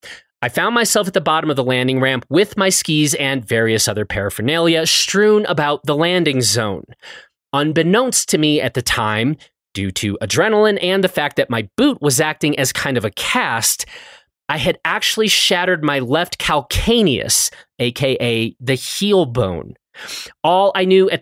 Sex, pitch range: male, 130-200 Hz